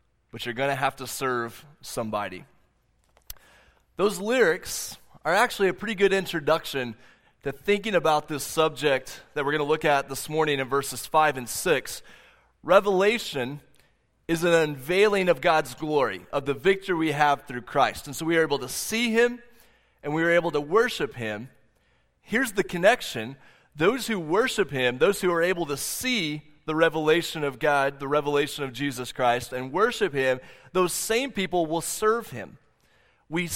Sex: male